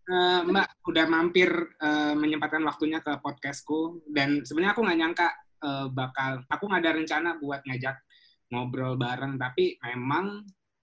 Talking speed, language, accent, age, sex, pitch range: 145 wpm, Indonesian, native, 20-39, male, 130-175 Hz